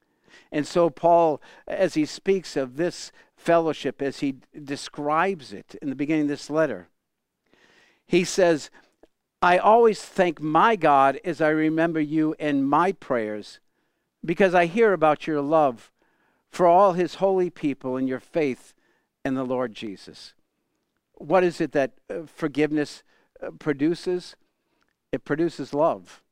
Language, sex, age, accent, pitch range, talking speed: English, male, 50-69, American, 135-175 Hz, 135 wpm